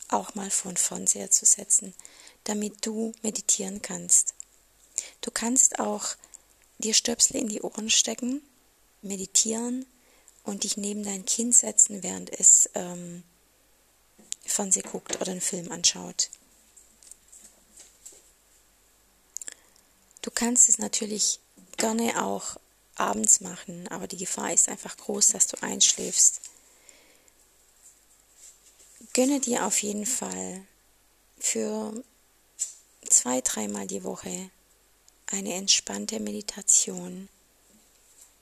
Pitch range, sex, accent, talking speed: 180-225 Hz, female, German, 100 wpm